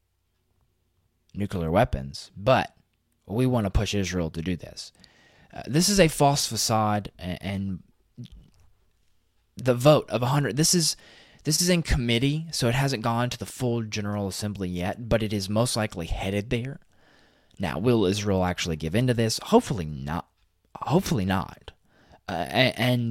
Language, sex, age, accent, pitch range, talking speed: English, male, 20-39, American, 90-120 Hz, 160 wpm